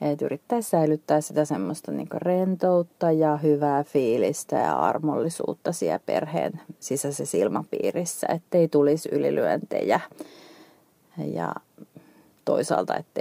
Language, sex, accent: Finnish, female, native